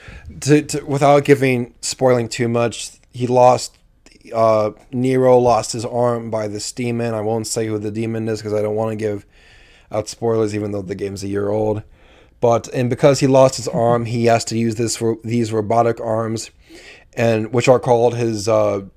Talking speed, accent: 195 wpm, American